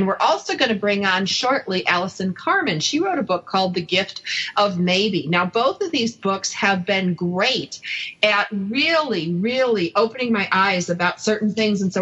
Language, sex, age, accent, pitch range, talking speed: English, female, 40-59, American, 190-260 Hz, 185 wpm